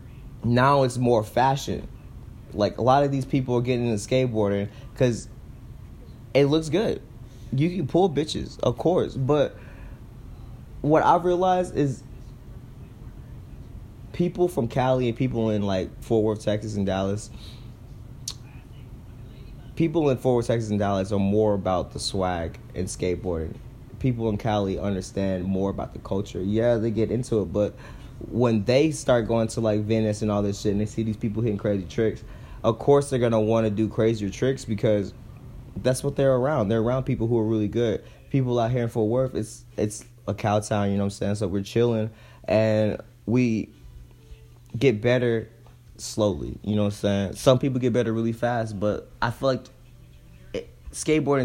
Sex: male